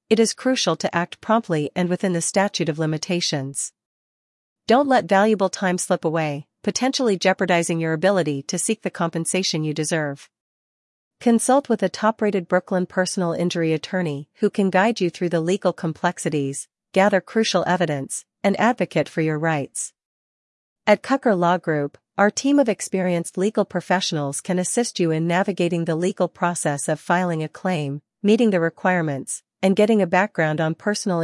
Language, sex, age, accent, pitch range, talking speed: English, female, 40-59, American, 160-205 Hz, 160 wpm